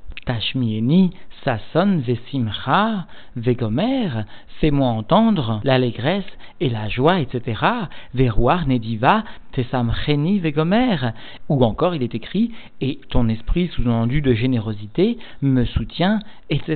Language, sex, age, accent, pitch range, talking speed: French, male, 50-69, French, 120-160 Hz, 105 wpm